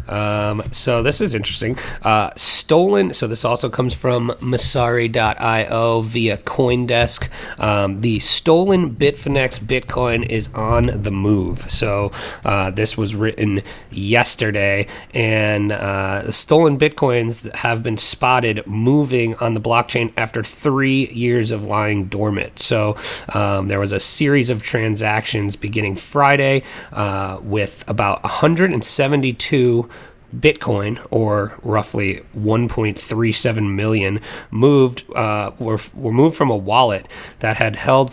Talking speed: 120 wpm